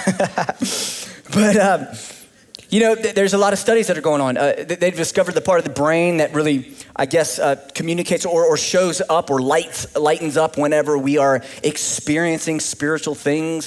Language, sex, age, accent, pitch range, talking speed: English, male, 20-39, American, 130-185 Hz, 175 wpm